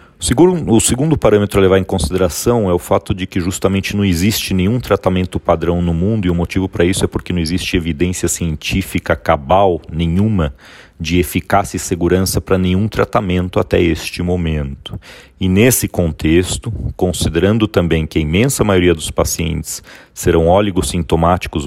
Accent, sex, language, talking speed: Brazilian, male, Portuguese, 155 wpm